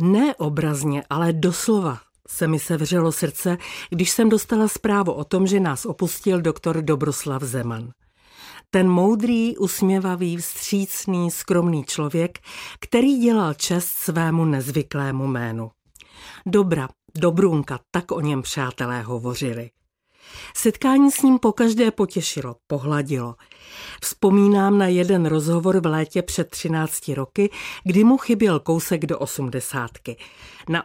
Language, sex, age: Czech, female, 50-69